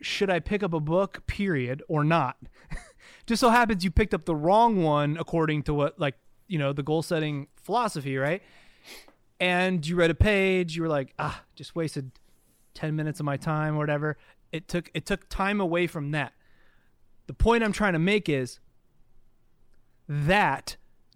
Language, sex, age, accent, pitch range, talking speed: English, male, 30-49, American, 140-190 Hz, 180 wpm